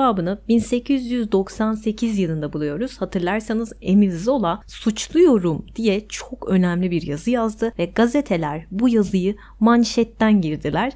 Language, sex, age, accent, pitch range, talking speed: Turkish, female, 30-49, native, 175-235 Hz, 110 wpm